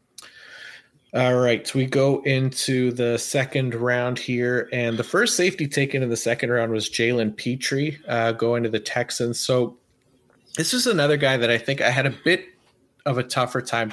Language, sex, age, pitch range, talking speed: English, male, 30-49, 105-125 Hz, 180 wpm